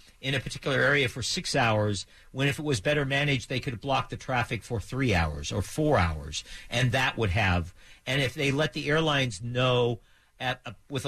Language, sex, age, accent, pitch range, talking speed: English, male, 50-69, American, 105-145 Hz, 205 wpm